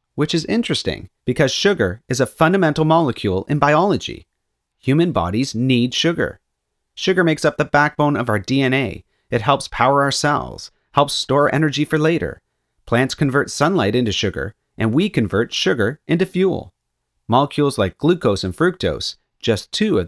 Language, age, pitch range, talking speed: English, 40-59, 105-155 Hz, 155 wpm